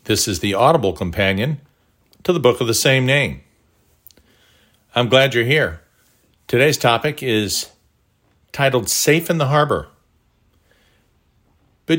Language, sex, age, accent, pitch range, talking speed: English, male, 50-69, American, 100-145 Hz, 125 wpm